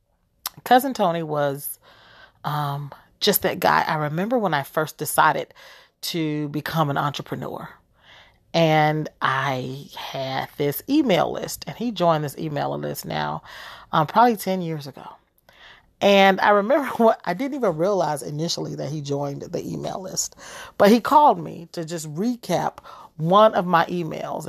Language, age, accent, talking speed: English, 40-59, American, 150 wpm